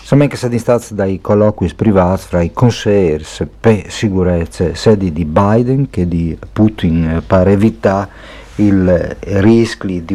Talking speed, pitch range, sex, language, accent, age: 135 wpm, 85-105 Hz, male, Italian, native, 50-69